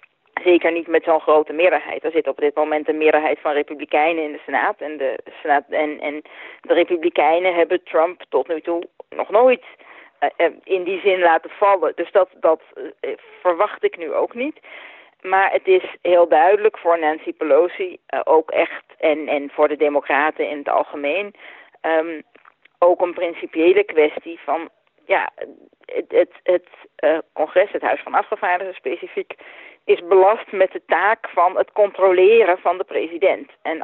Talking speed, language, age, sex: 170 wpm, Dutch, 40-59, female